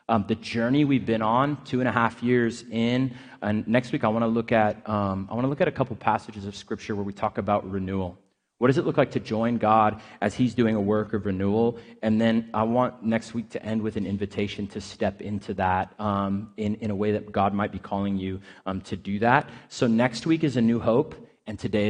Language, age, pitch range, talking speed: English, 30-49, 100-120 Hz, 245 wpm